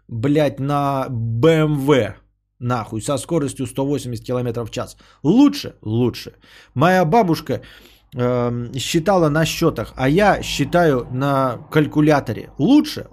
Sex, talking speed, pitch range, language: male, 110 wpm, 120-165 Hz, Bulgarian